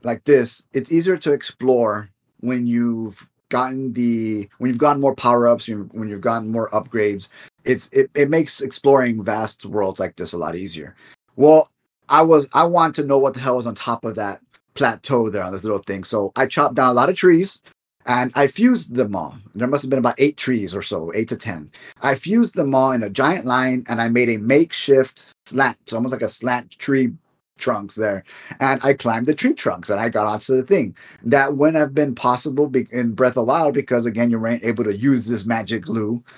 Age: 30-49